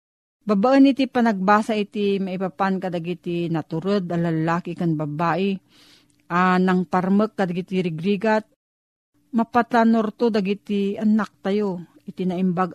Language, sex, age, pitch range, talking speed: Filipino, female, 40-59, 175-220 Hz, 125 wpm